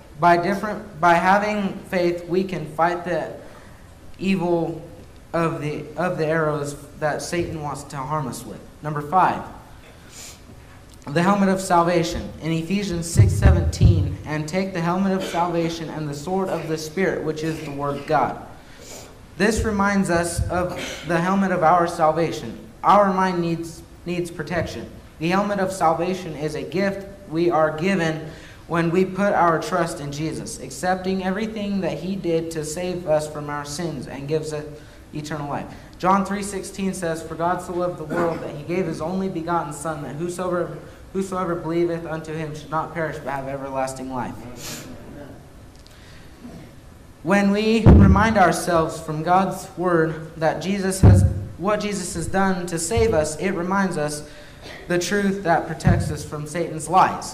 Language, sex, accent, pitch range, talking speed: English, male, American, 150-180 Hz, 160 wpm